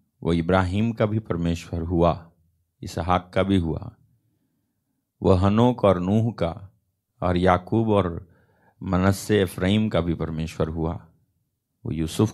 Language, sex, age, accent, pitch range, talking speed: Hindi, male, 50-69, native, 85-110 Hz, 125 wpm